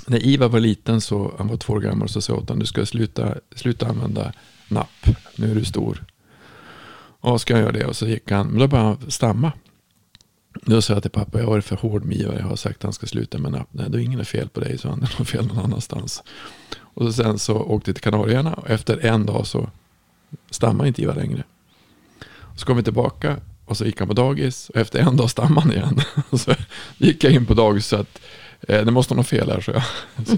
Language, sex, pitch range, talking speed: Swedish, male, 105-130 Hz, 240 wpm